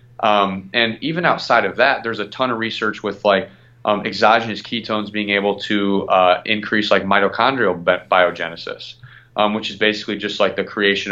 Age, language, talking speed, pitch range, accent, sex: 30-49, English, 175 wpm, 100-120 Hz, American, male